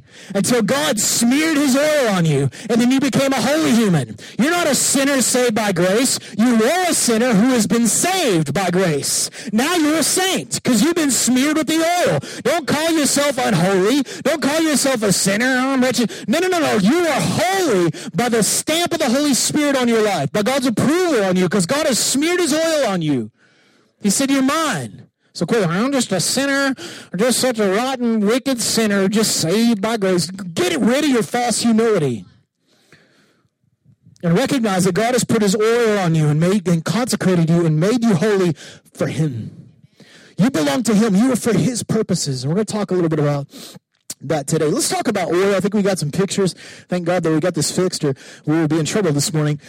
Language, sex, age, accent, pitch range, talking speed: English, male, 40-59, American, 180-265 Hz, 210 wpm